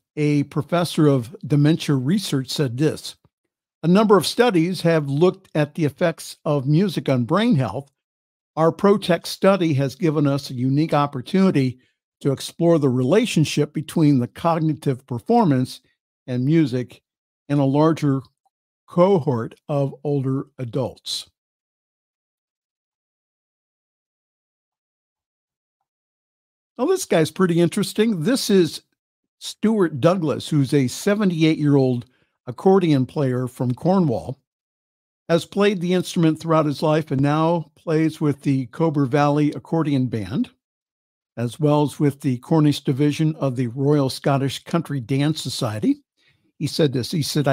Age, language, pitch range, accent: 50-69, English, 135-170 Hz, American